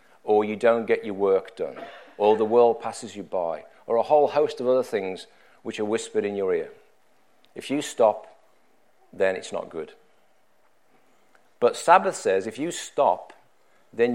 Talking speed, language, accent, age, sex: 170 wpm, English, British, 40-59, male